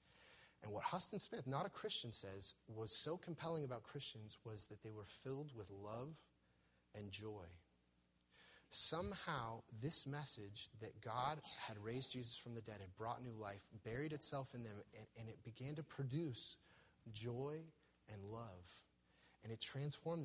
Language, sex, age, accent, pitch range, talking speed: English, male, 30-49, American, 95-130 Hz, 155 wpm